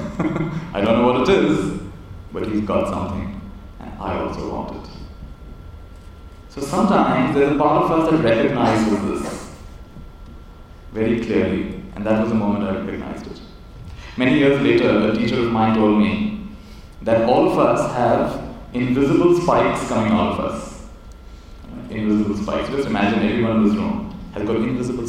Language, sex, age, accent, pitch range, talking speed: English, male, 30-49, Indian, 100-140 Hz, 160 wpm